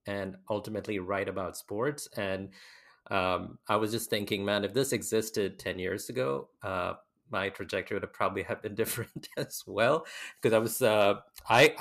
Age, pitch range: 30-49, 95-115 Hz